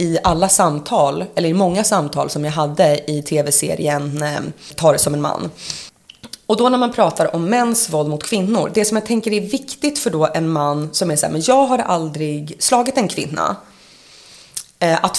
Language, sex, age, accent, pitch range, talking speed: English, female, 30-49, Swedish, 155-220 Hz, 190 wpm